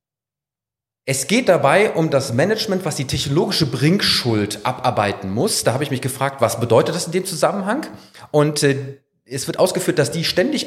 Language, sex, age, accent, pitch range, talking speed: German, male, 40-59, German, 130-180 Hz, 175 wpm